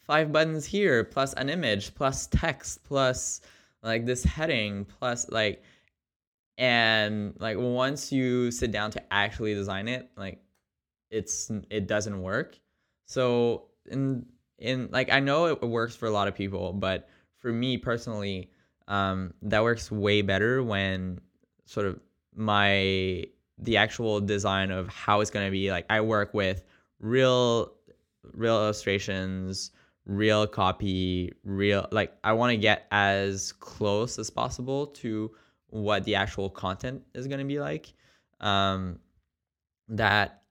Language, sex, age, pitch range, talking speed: English, male, 20-39, 95-115 Hz, 140 wpm